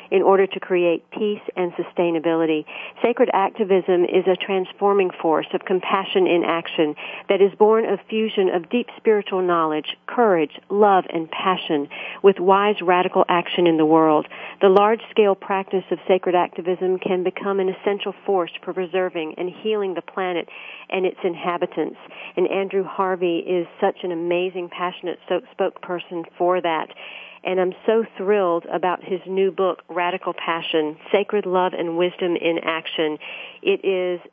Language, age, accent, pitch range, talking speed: English, 50-69, American, 165-190 Hz, 150 wpm